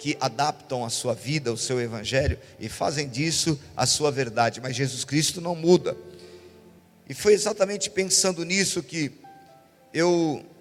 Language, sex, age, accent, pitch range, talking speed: Portuguese, male, 50-69, Brazilian, 150-190 Hz, 145 wpm